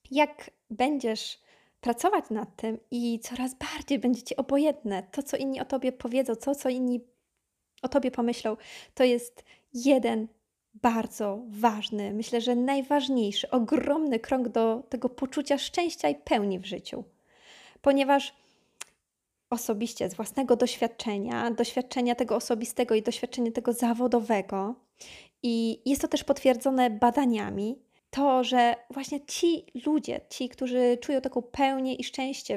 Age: 20-39